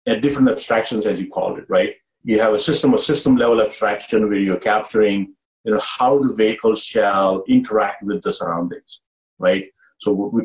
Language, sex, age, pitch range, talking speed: English, male, 50-69, 105-135 Hz, 190 wpm